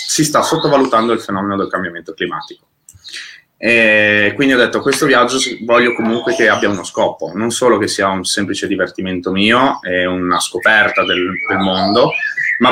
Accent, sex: native, male